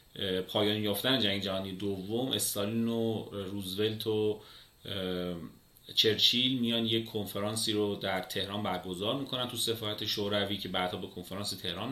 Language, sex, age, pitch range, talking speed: Persian, male, 30-49, 100-125 Hz, 130 wpm